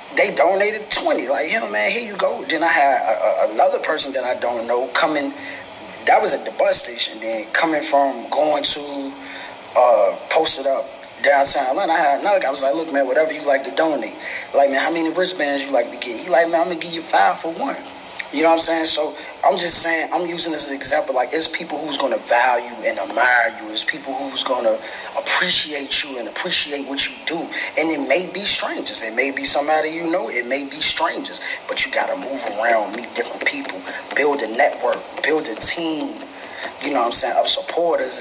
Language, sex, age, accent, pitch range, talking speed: English, male, 20-39, American, 140-165 Hz, 225 wpm